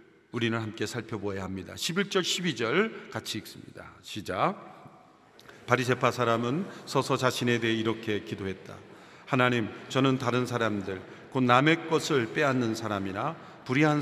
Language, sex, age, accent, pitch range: Korean, male, 40-59, native, 115-165 Hz